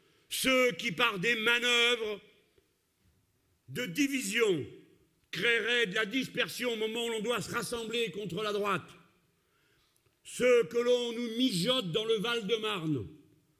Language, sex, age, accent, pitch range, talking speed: French, male, 50-69, French, 215-250 Hz, 130 wpm